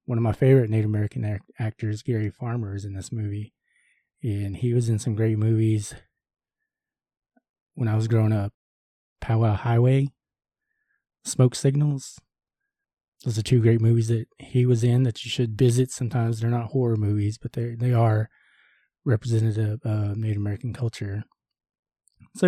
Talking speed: 150 wpm